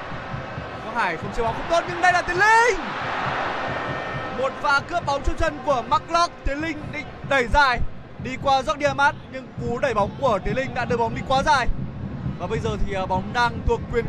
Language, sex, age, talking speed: Vietnamese, male, 20-39, 200 wpm